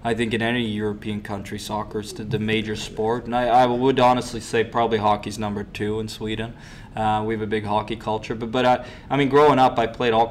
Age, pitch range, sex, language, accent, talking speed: 20-39, 110-120 Hz, male, English, American, 245 wpm